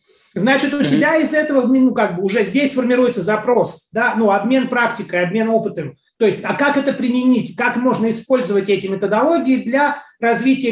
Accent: native